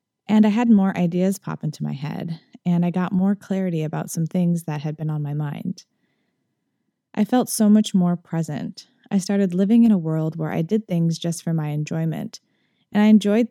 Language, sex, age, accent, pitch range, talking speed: English, female, 10-29, American, 160-205 Hz, 205 wpm